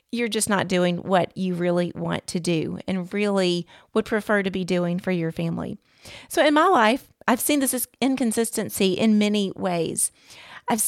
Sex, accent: female, American